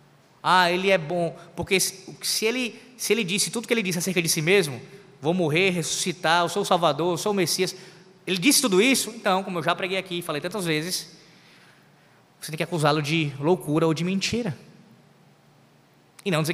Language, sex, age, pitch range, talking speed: Portuguese, male, 20-39, 160-200 Hz, 195 wpm